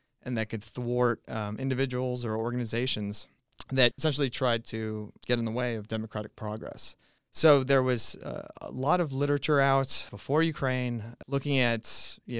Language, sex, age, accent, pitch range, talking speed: English, male, 30-49, American, 115-140 Hz, 160 wpm